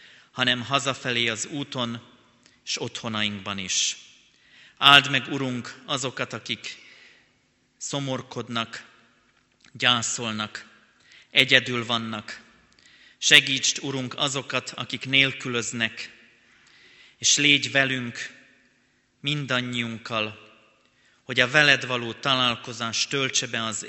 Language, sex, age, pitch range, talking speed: Hungarian, male, 30-49, 110-125 Hz, 85 wpm